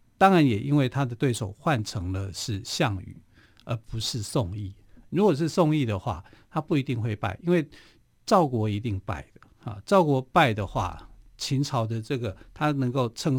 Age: 50-69